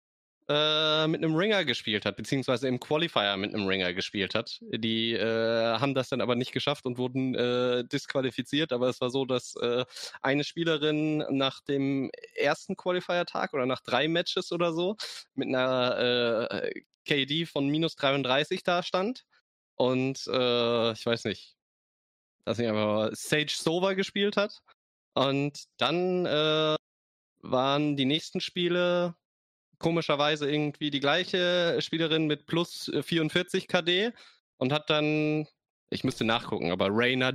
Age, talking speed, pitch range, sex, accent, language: 20-39, 145 wpm, 125-165 Hz, male, German, German